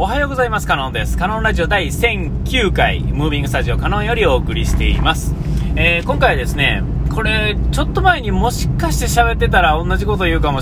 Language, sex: Japanese, male